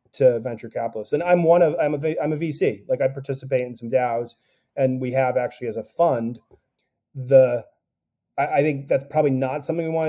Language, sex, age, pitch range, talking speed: English, male, 30-49, 130-155 Hz, 210 wpm